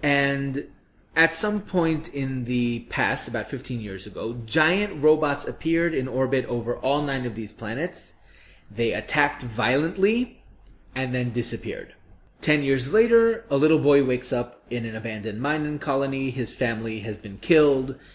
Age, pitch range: 30-49, 115-145 Hz